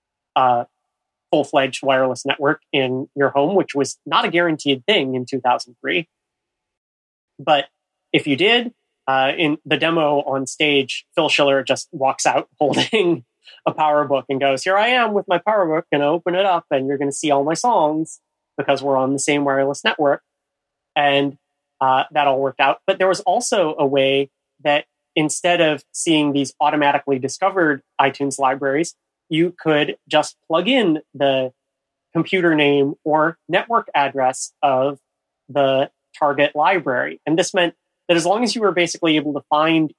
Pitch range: 140-170 Hz